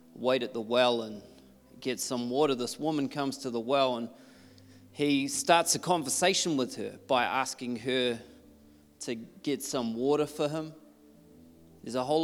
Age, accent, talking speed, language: 20-39, Australian, 160 wpm, English